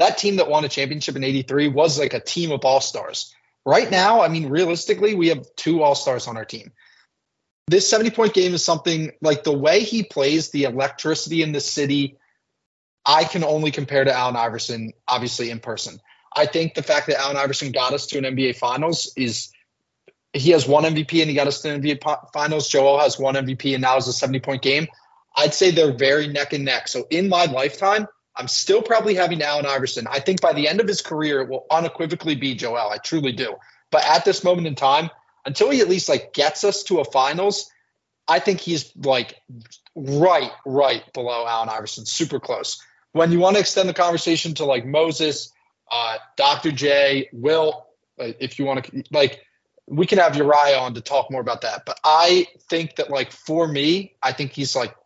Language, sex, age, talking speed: English, male, 30-49, 205 wpm